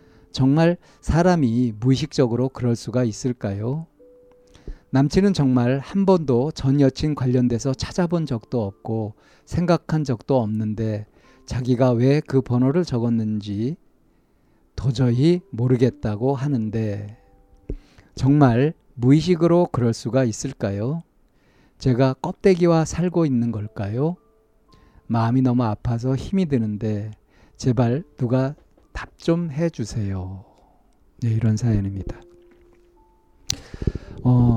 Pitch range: 110-145 Hz